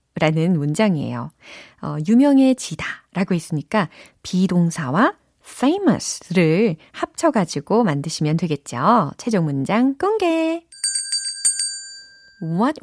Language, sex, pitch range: Korean, female, 165-255 Hz